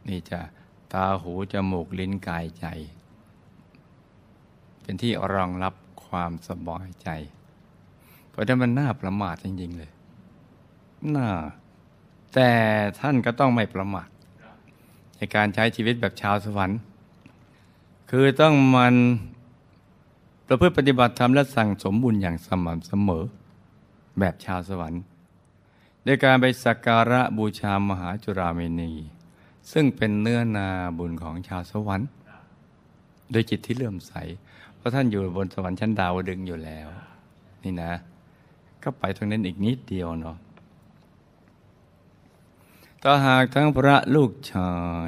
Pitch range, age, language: 90-110 Hz, 60-79, Thai